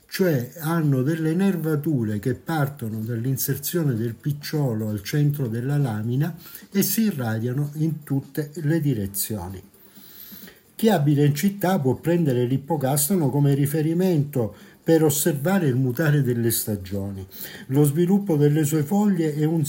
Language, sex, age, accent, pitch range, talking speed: Italian, male, 60-79, native, 130-175 Hz, 130 wpm